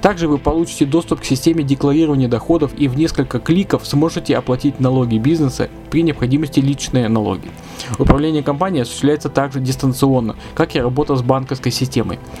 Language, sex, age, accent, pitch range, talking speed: Russian, male, 20-39, native, 125-160 Hz, 150 wpm